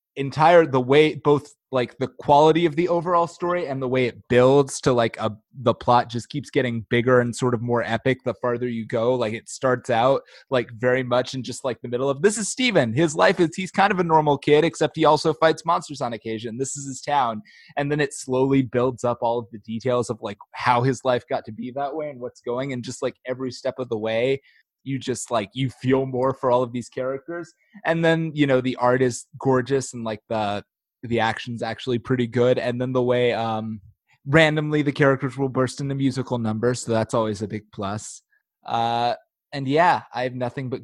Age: 20-39